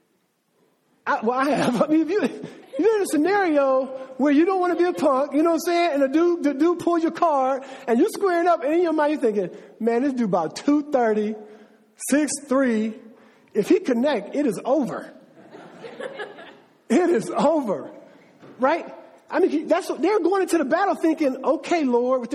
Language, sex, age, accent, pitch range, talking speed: English, male, 50-69, American, 255-345 Hz, 195 wpm